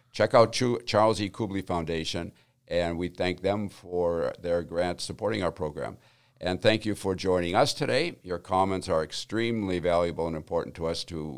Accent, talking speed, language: American, 175 wpm, English